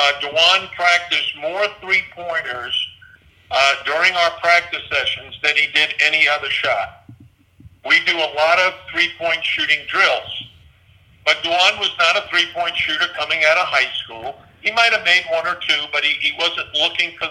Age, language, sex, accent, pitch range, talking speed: 50-69, English, male, American, 125-175 Hz, 165 wpm